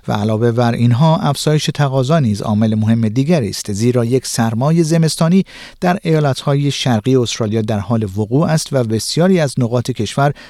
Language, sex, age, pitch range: Persian, male, 50-69, 115-160 Hz